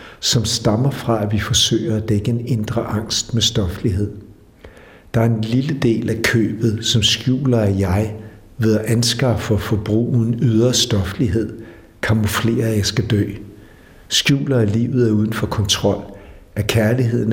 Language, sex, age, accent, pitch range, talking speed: Danish, male, 60-79, native, 105-120 Hz, 150 wpm